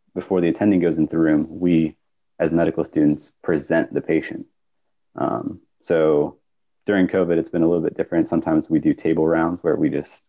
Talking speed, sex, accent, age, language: 185 wpm, male, American, 30-49, English